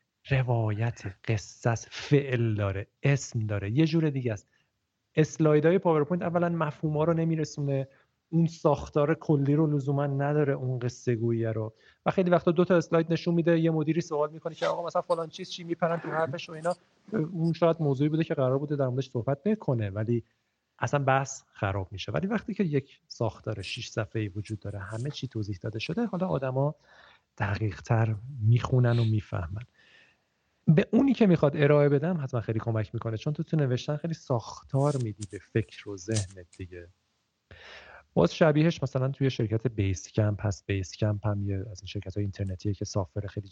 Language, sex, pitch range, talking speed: Persian, male, 105-155 Hz, 175 wpm